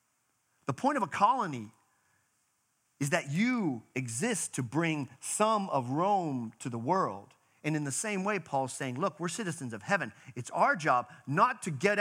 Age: 40-59